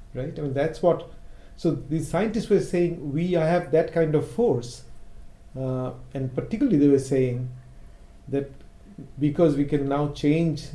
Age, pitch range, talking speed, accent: 40-59, 125-150 Hz, 160 wpm, Indian